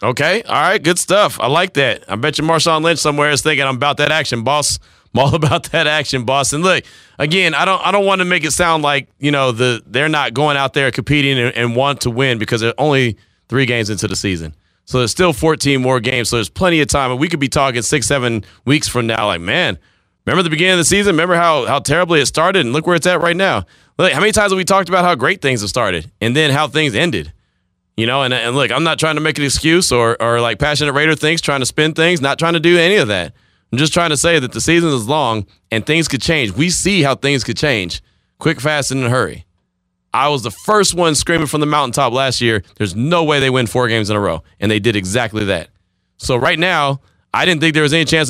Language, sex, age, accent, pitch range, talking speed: English, male, 30-49, American, 115-160 Hz, 265 wpm